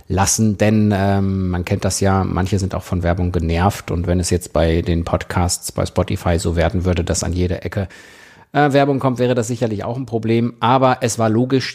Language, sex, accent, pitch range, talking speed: German, male, German, 90-105 Hz, 215 wpm